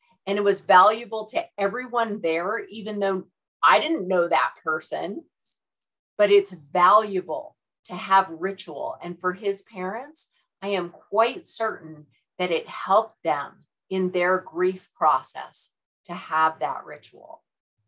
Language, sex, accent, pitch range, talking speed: English, female, American, 180-215 Hz, 135 wpm